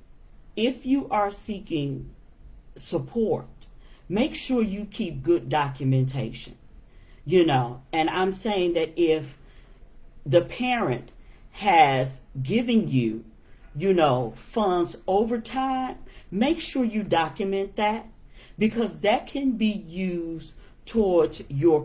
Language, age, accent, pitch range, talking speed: English, 50-69, American, 145-205 Hz, 110 wpm